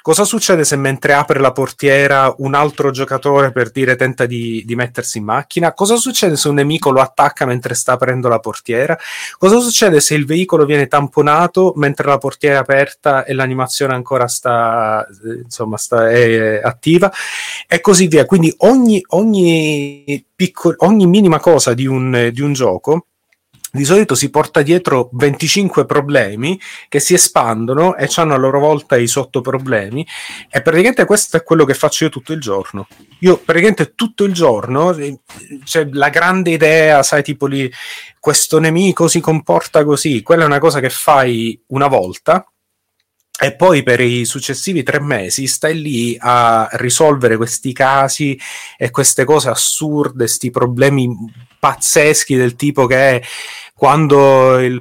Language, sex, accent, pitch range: Italian, male, native, 125-160 Hz